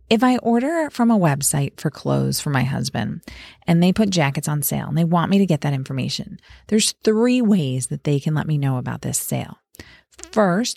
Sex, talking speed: female, 210 wpm